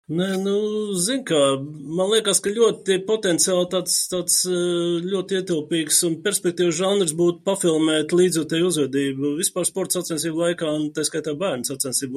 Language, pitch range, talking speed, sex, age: English, 145-175 Hz, 130 wpm, male, 30-49